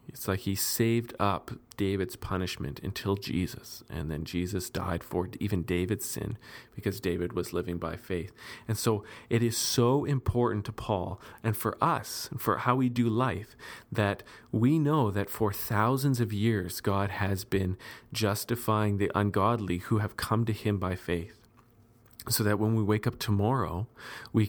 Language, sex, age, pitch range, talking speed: English, male, 40-59, 95-120 Hz, 165 wpm